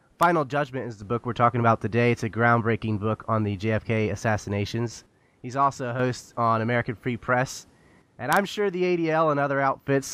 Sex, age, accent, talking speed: male, 20-39, American, 195 wpm